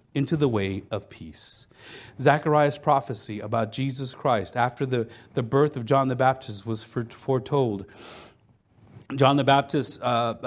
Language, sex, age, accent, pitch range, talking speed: English, male, 40-59, American, 110-135 Hz, 140 wpm